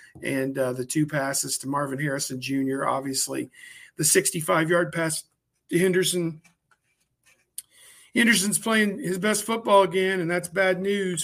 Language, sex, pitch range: English, male, 160-190 Hz